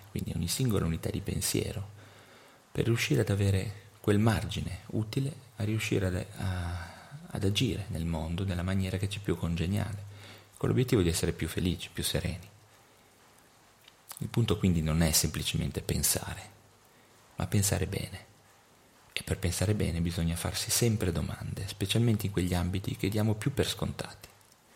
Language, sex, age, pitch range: Italian, male, 30-49, 90-115 Hz